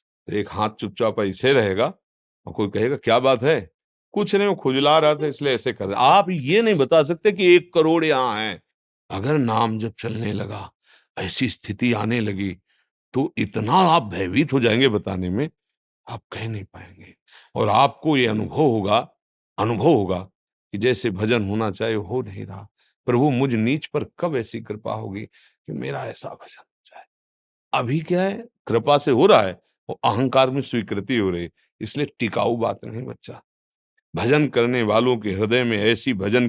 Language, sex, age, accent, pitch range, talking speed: Hindi, male, 50-69, native, 100-130 Hz, 165 wpm